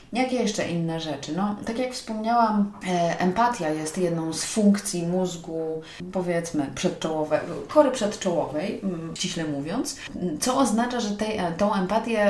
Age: 30-49